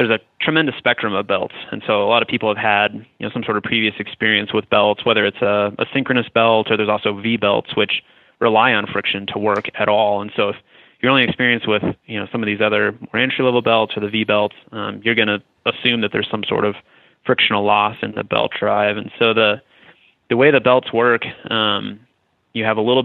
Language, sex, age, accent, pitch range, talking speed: English, male, 20-39, American, 105-120 Hz, 230 wpm